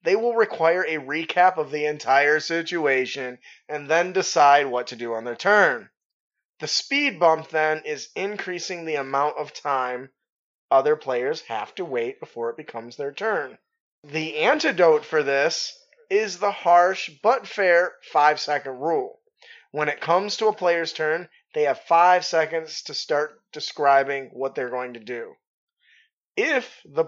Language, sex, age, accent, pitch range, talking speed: English, male, 20-39, American, 150-235 Hz, 155 wpm